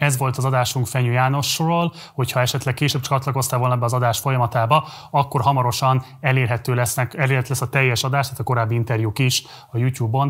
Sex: male